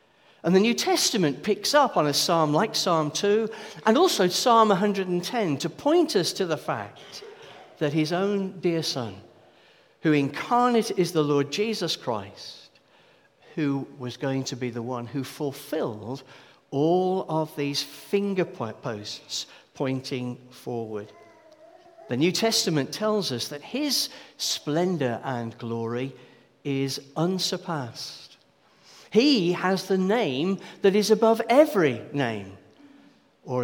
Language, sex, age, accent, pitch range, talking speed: English, male, 50-69, British, 135-205 Hz, 130 wpm